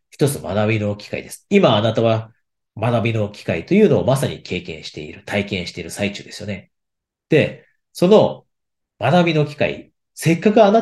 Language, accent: Japanese, native